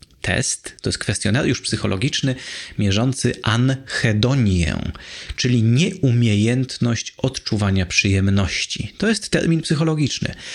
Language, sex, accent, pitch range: Polish, male, native, 100-130 Hz